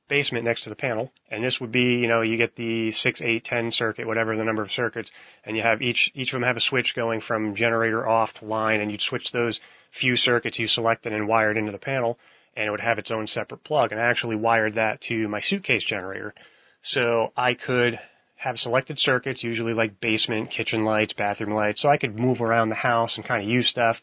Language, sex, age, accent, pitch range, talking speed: German, male, 30-49, American, 110-130 Hz, 235 wpm